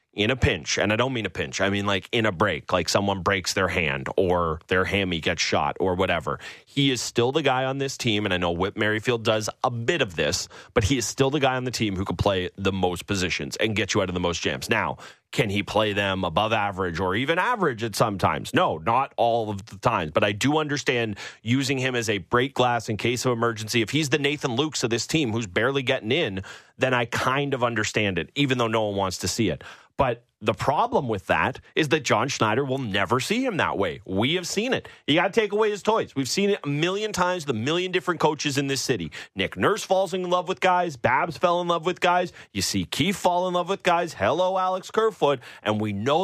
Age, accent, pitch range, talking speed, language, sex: 30-49, American, 105-155 Hz, 250 wpm, English, male